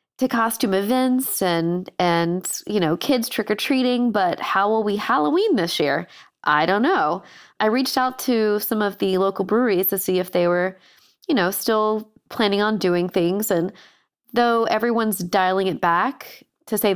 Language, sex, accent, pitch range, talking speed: English, female, American, 190-240 Hz, 165 wpm